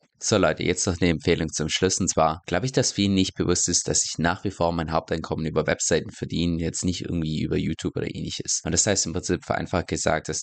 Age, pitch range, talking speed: 20-39, 85-100 Hz, 240 wpm